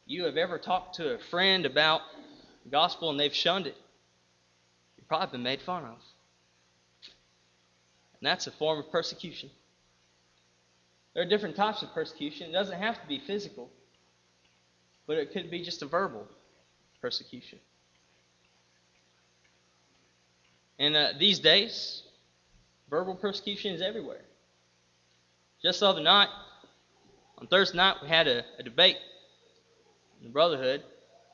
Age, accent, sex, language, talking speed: 20-39, American, male, English, 130 wpm